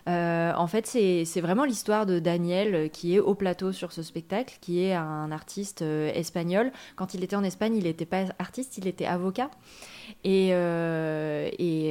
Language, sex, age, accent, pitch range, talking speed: French, female, 20-39, French, 165-200 Hz, 185 wpm